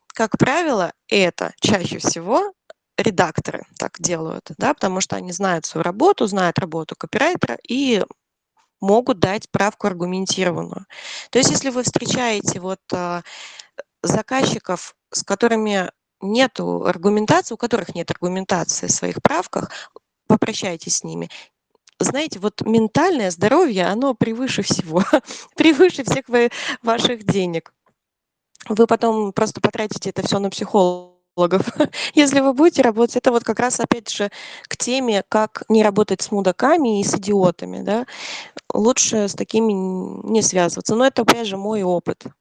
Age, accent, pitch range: 20-39, native, 190-245 Hz